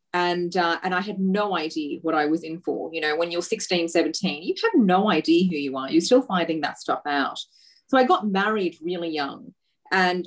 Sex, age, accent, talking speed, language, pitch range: female, 30-49, Australian, 220 wpm, English, 165-205 Hz